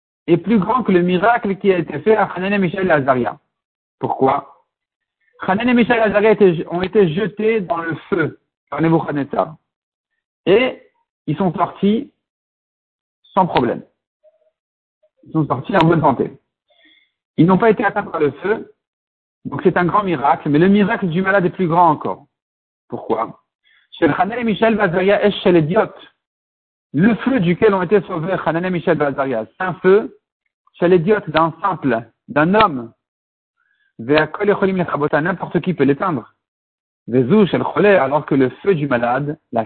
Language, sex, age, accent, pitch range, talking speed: French, male, 50-69, French, 145-200 Hz, 150 wpm